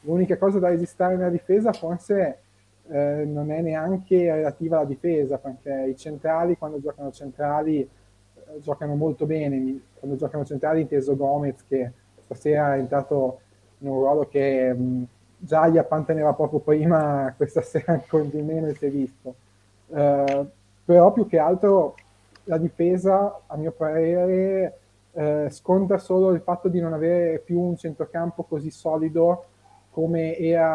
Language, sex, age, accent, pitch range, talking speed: Italian, male, 20-39, native, 135-165 Hz, 145 wpm